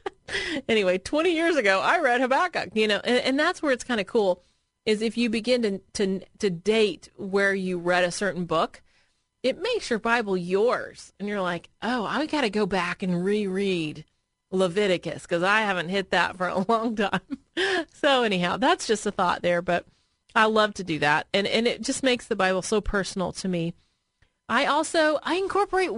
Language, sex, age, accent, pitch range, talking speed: English, female, 30-49, American, 190-245 Hz, 195 wpm